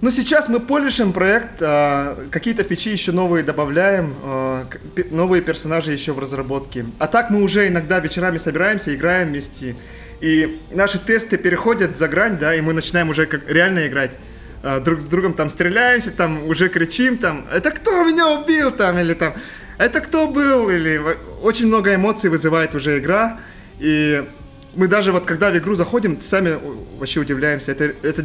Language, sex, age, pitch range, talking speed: Russian, male, 20-39, 155-200 Hz, 165 wpm